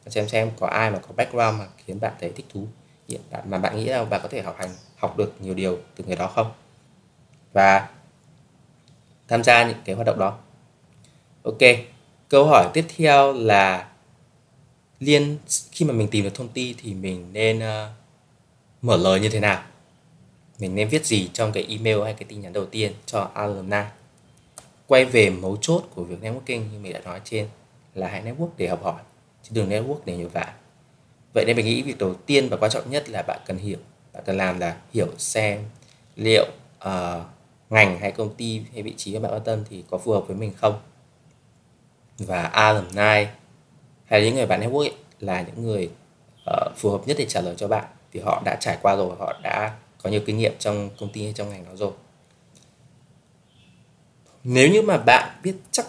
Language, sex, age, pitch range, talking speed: Vietnamese, male, 20-39, 105-135 Hz, 200 wpm